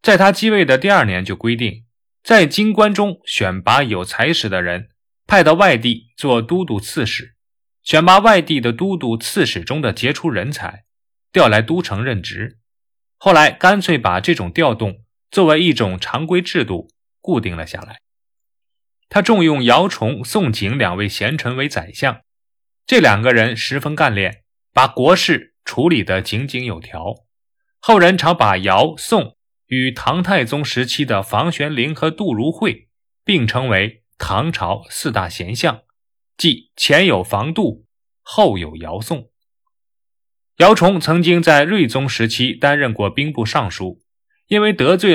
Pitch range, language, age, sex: 110-175 Hz, Chinese, 20-39, male